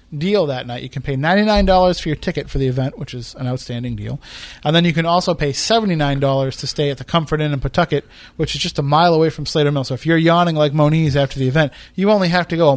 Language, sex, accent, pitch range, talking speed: English, male, American, 135-170 Hz, 270 wpm